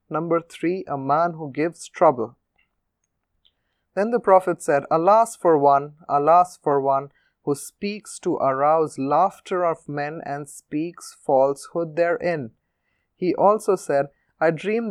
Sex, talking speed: male, 135 wpm